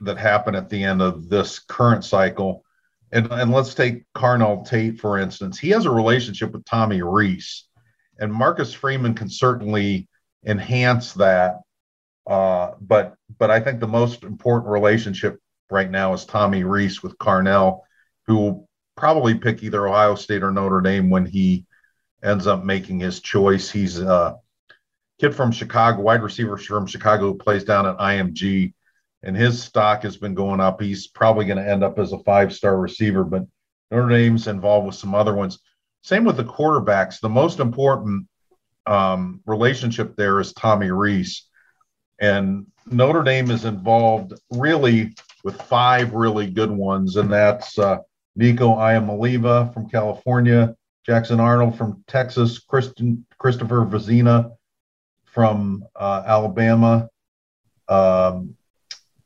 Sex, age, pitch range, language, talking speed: male, 50-69, 100-120 Hz, English, 150 wpm